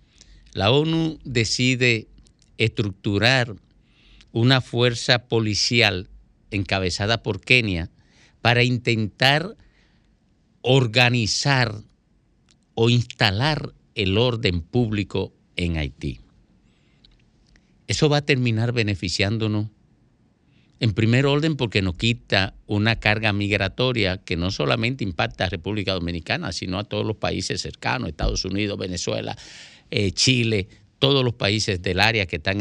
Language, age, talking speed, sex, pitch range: Spanish, 50-69, 105 wpm, male, 95-120 Hz